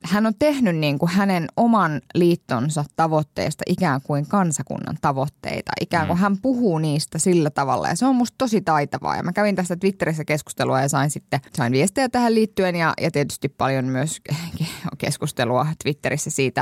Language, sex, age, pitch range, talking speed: Finnish, female, 20-39, 140-180 Hz, 170 wpm